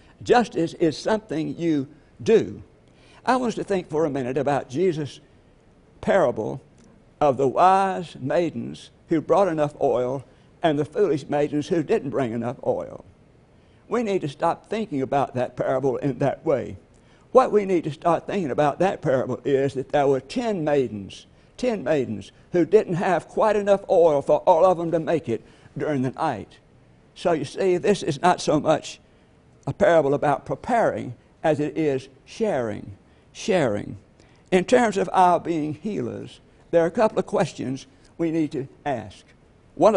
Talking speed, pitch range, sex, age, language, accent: 165 wpm, 135-185 Hz, male, 60-79, English, American